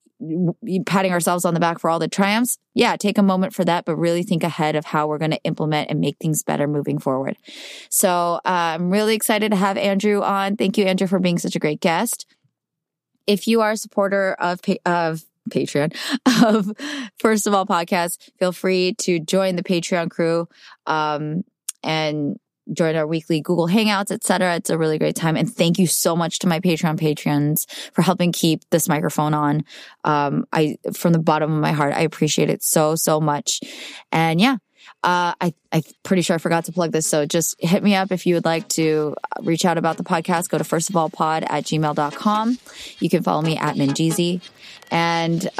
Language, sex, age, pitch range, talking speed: English, female, 20-39, 160-195 Hz, 200 wpm